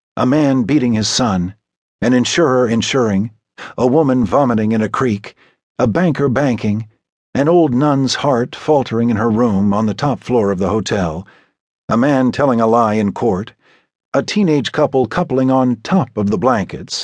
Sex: male